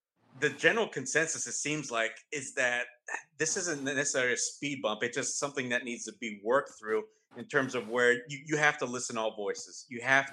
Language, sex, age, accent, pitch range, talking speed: English, male, 30-49, American, 115-140 Hz, 215 wpm